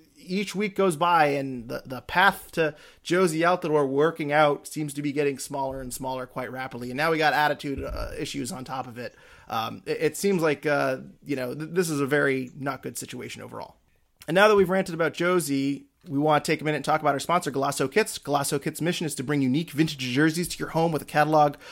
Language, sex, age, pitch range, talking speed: English, male, 30-49, 140-165 Hz, 240 wpm